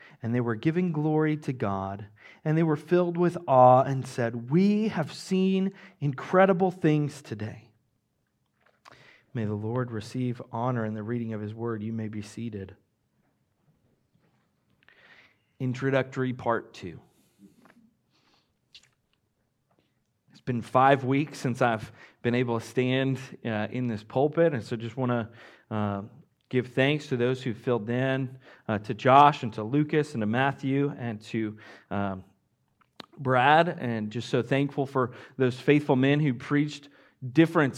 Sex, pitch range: male, 110-140 Hz